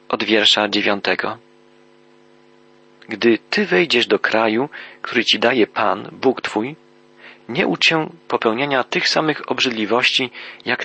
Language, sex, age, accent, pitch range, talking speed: Polish, male, 40-59, native, 100-130 Hz, 120 wpm